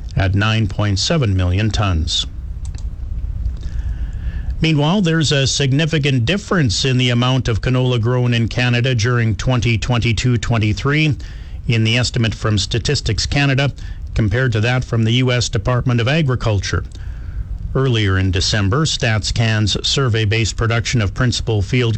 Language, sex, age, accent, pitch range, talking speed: English, male, 50-69, American, 100-125 Hz, 115 wpm